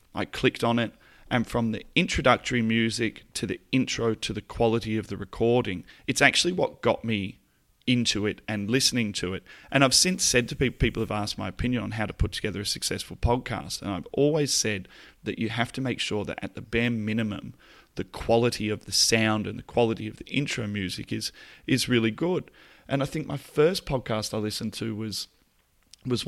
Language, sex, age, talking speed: English, male, 30-49, 205 wpm